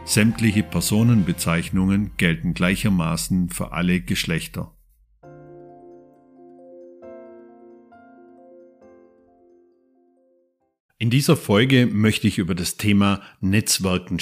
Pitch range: 100-135 Hz